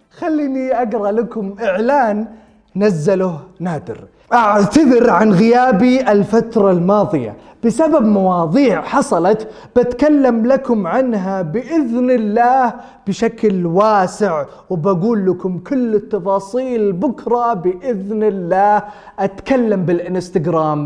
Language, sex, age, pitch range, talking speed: Arabic, male, 20-39, 195-260 Hz, 85 wpm